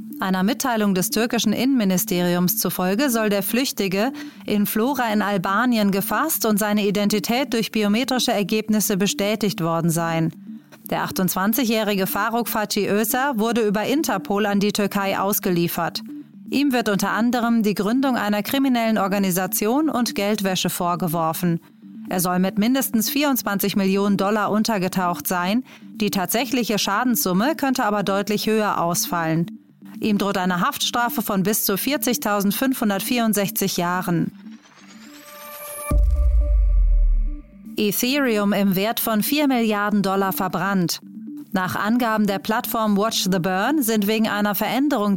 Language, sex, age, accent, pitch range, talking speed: German, female, 30-49, German, 195-235 Hz, 120 wpm